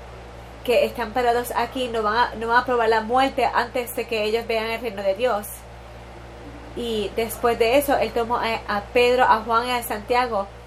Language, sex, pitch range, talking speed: English, female, 195-245 Hz, 200 wpm